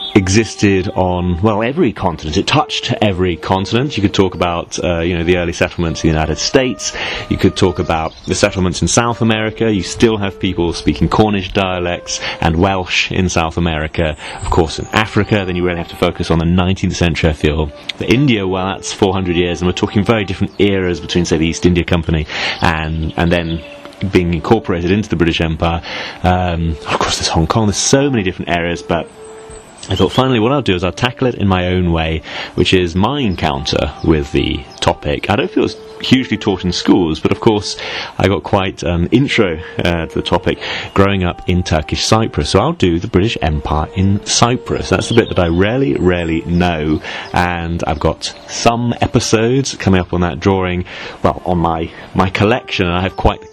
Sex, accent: male, British